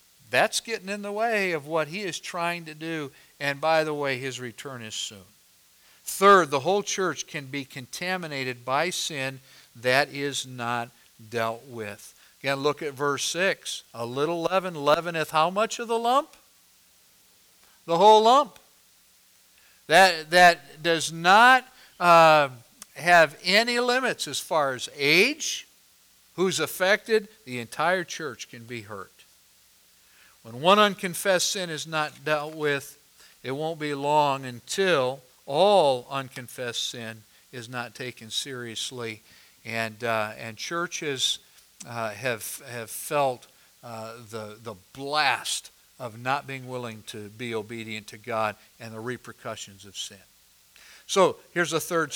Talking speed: 140 wpm